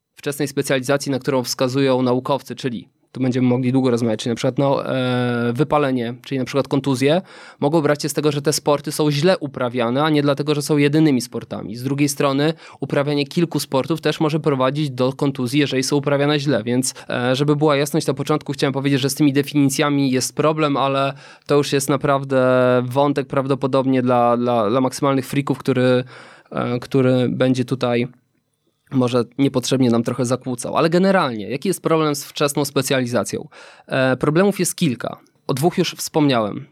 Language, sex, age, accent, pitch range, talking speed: Polish, male, 20-39, native, 130-150 Hz, 175 wpm